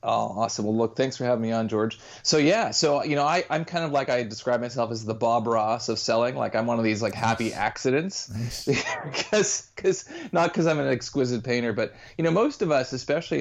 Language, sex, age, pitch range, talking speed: English, male, 30-49, 110-130 Hz, 225 wpm